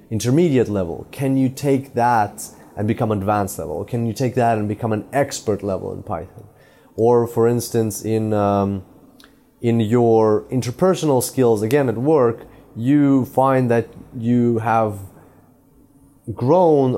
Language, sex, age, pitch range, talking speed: English, male, 30-49, 110-130 Hz, 140 wpm